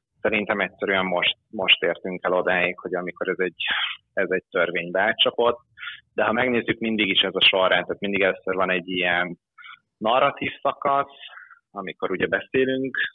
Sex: male